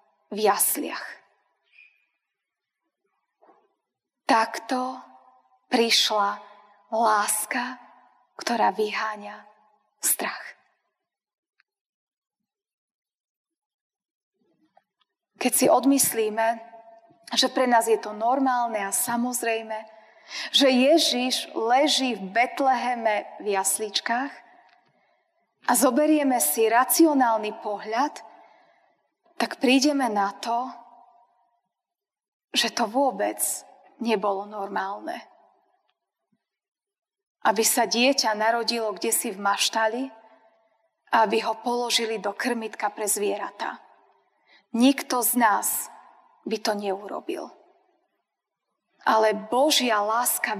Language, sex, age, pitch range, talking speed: Slovak, female, 20-39, 220-270 Hz, 75 wpm